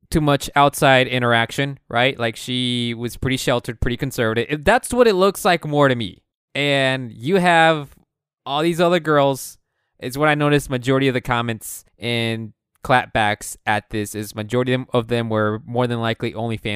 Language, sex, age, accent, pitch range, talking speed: English, male, 20-39, American, 115-150 Hz, 170 wpm